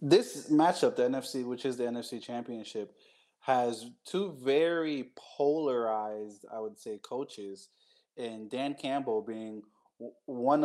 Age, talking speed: 20-39, 125 wpm